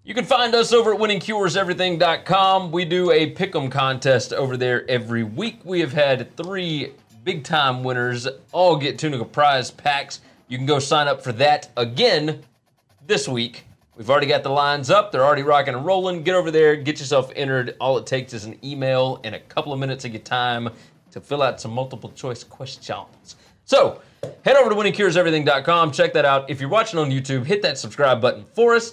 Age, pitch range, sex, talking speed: 30-49, 125-180 Hz, male, 195 wpm